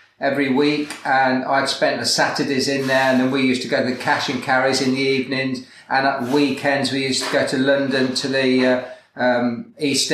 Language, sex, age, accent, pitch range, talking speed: English, male, 40-59, British, 140-185 Hz, 220 wpm